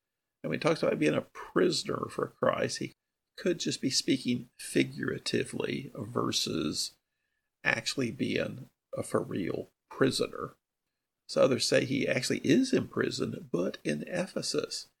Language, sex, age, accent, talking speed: English, male, 50-69, American, 130 wpm